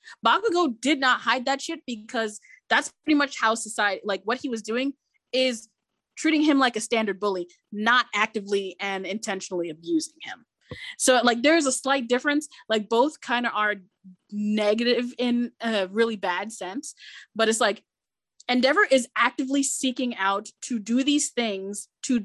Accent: American